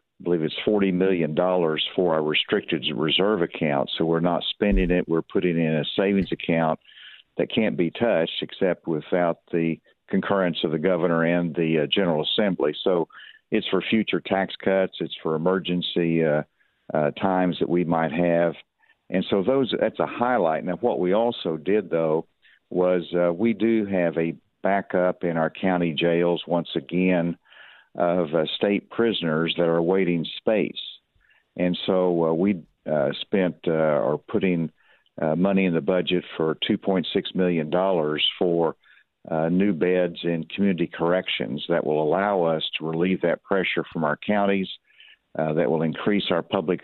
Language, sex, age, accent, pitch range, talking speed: English, male, 50-69, American, 80-95 Hz, 165 wpm